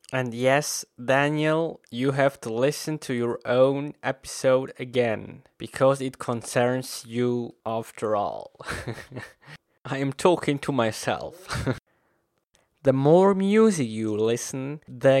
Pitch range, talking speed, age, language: 120-145 Hz, 115 wpm, 20-39, English